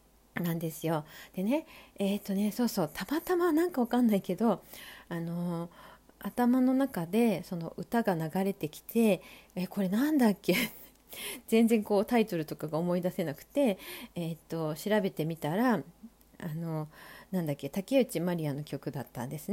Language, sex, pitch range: Japanese, female, 175-245 Hz